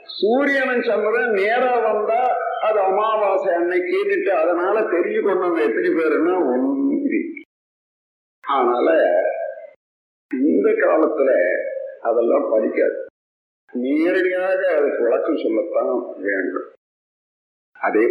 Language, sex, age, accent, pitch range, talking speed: Tamil, male, 50-69, native, 290-425 Hz, 75 wpm